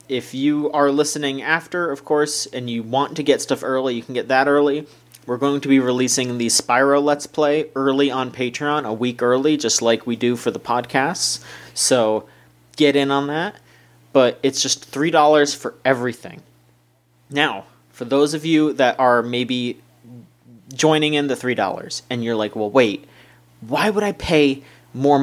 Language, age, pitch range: English, 30-49, 110-145 Hz